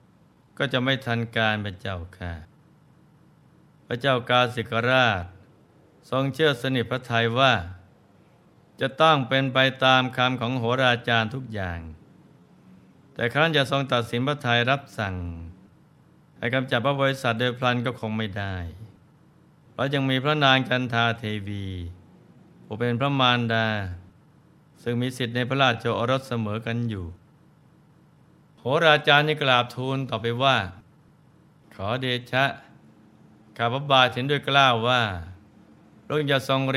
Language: Thai